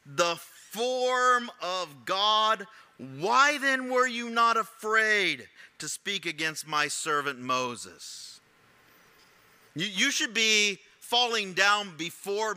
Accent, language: American, English